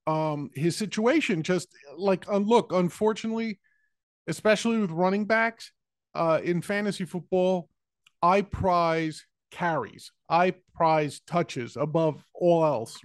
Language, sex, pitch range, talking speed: English, male, 160-190 Hz, 115 wpm